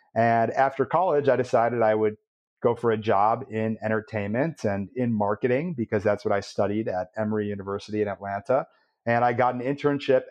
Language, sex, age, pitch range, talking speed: English, male, 30-49, 110-135 Hz, 180 wpm